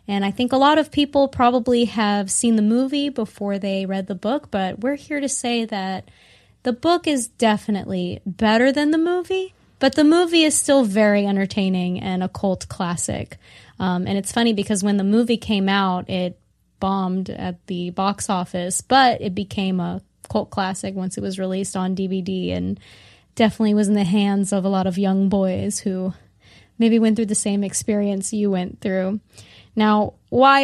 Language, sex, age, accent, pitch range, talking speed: English, female, 20-39, American, 190-240 Hz, 185 wpm